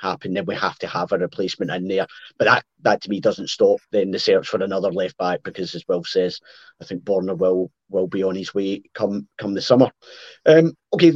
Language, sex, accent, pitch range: English, male, British, 110-150 Hz